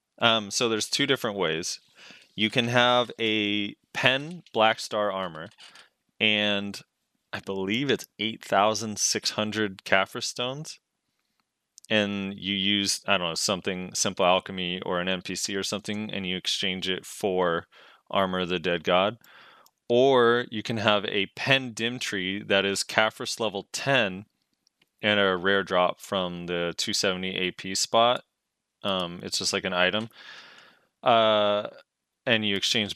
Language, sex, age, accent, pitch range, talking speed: English, male, 20-39, American, 95-115 Hz, 145 wpm